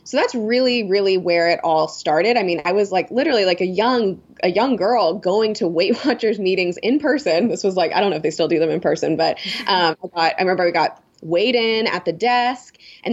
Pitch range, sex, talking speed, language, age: 170-225 Hz, female, 245 wpm, English, 20-39